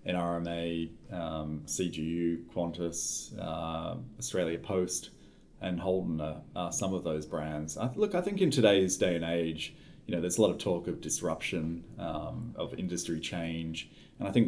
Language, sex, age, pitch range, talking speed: English, male, 30-49, 80-90 Hz, 160 wpm